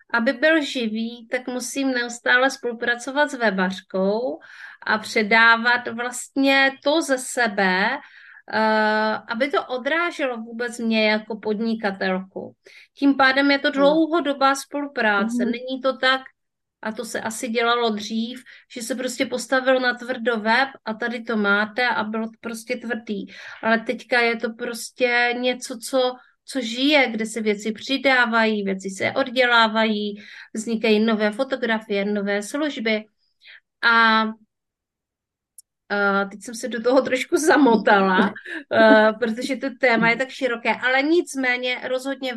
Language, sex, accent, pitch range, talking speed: Czech, female, native, 220-260 Hz, 130 wpm